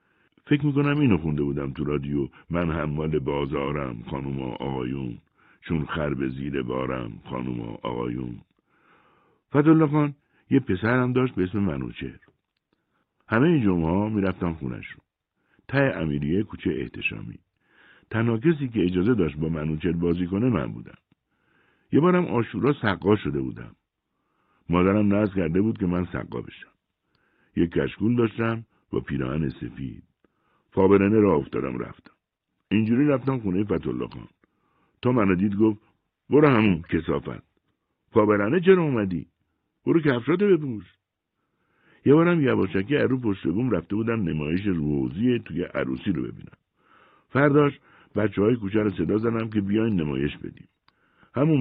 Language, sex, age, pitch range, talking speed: Persian, male, 60-79, 75-125 Hz, 130 wpm